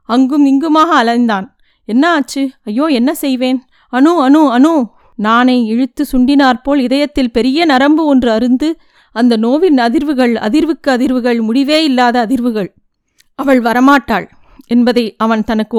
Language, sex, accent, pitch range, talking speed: Tamil, female, native, 230-275 Hz, 120 wpm